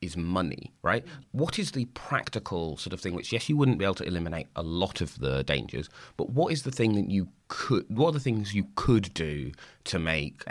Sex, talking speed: male, 230 wpm